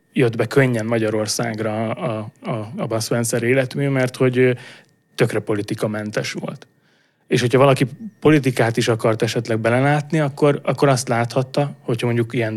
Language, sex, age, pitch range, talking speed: English, male, 30-49, 115-135 Hz, 145 wpm